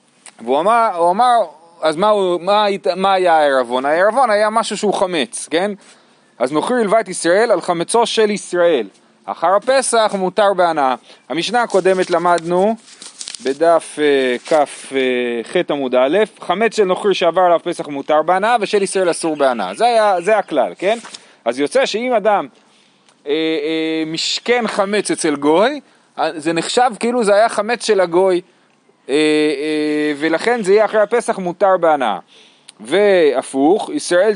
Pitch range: 160-220 Hz